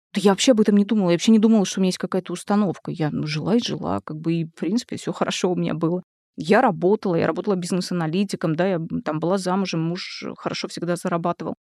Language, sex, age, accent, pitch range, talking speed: Russian, female, 20-39, native, 180-225 Hz, 230 wpm